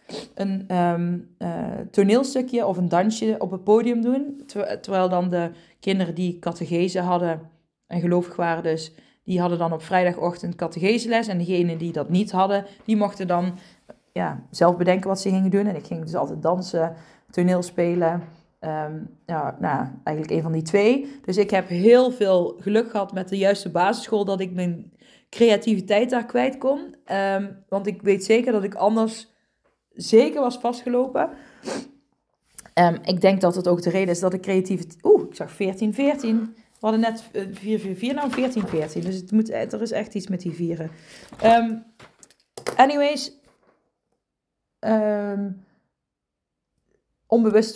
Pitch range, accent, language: 180-225 Hz, Dutch, Dutch